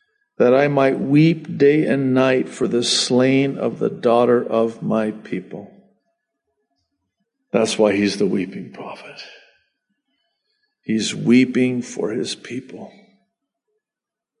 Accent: American